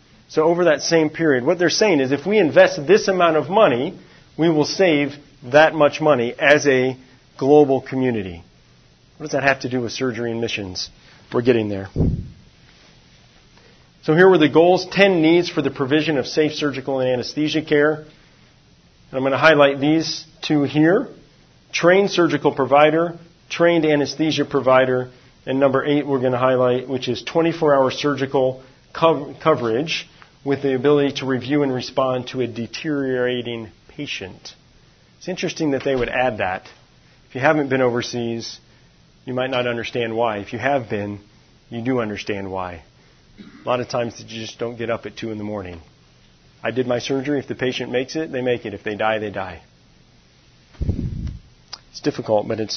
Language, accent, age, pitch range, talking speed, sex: English, American, 40-59, 120-155 Hz, 175 wpm, male